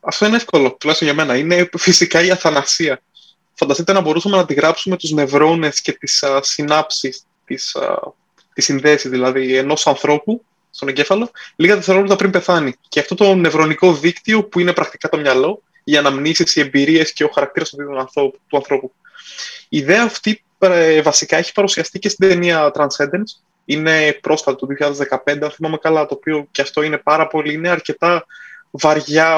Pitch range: 150-190 Hz